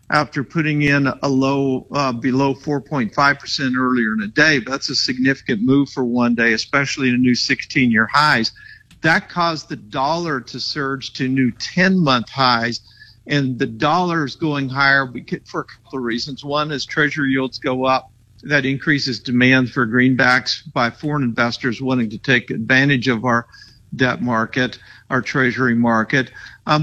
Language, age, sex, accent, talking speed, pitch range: English, 50-69, male, American, 160 wpm, 125-145 Hz